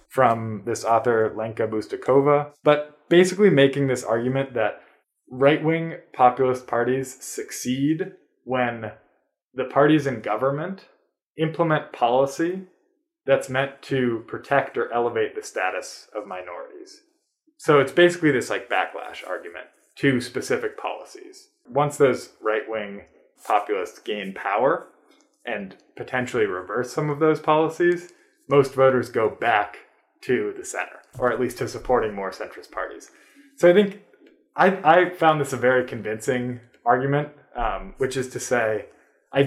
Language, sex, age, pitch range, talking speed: English, male, 20-39, 125-200 Hz, 130 wpm